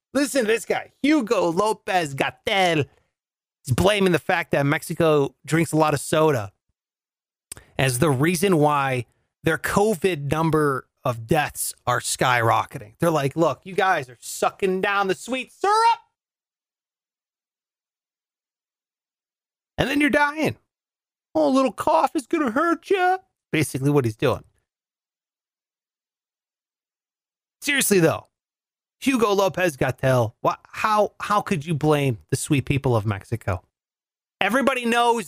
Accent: American